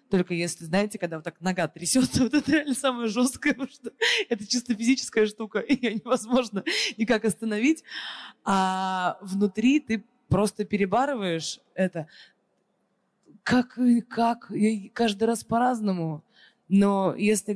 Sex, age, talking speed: female, 20-39, 125 wpm